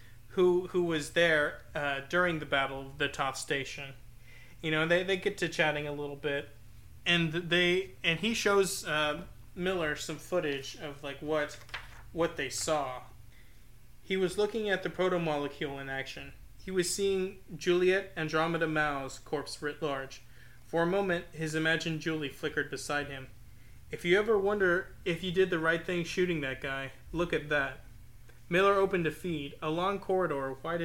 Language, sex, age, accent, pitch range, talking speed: English, male, 30-49, American, 140-175 Hz, 170 wpm